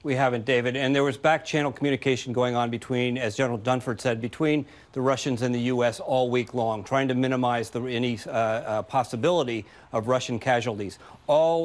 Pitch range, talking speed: 120-135 Hz, 190 wpm